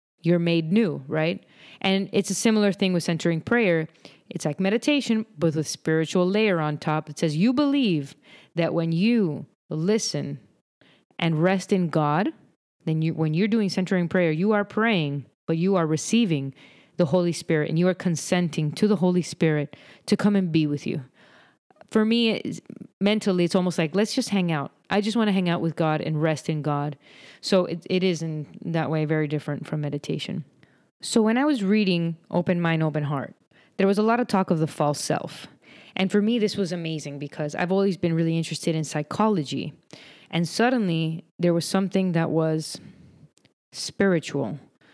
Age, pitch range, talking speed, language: 30-49, 160-195 Hz, 185 wpm, English